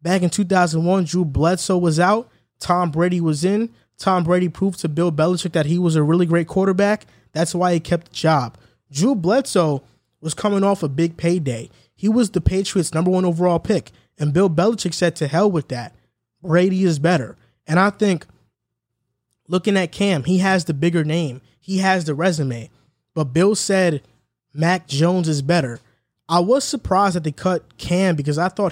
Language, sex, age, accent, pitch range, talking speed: English, male, 20-39, American, 155-185 Hz, 185 wpm